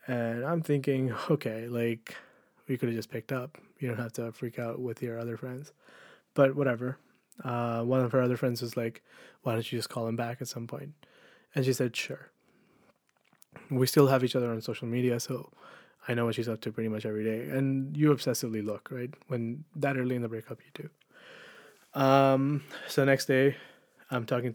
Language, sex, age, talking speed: English, male, 20-39, 205 wpm